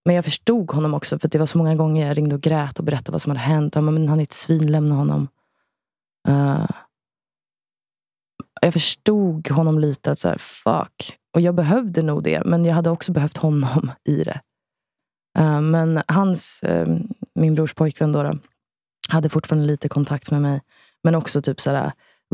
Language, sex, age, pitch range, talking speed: English, female, 20-39, 145-165 Hz, 190 wpm